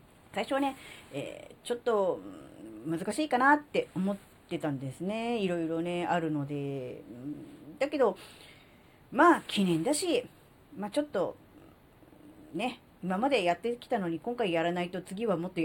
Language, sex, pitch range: Japanese, female, 165-255 Hz